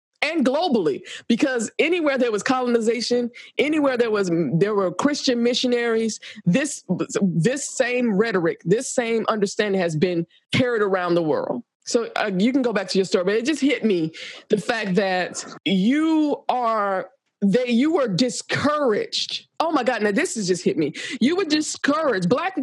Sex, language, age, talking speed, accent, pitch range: female, English, 20-39, 165 wpm, American, 190-250 Hz